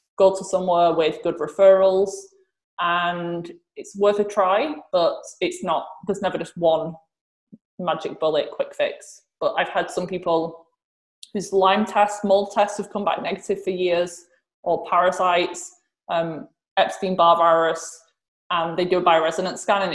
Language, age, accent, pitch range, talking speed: English, 20-39, British, 170-210 Hz, 150 wpm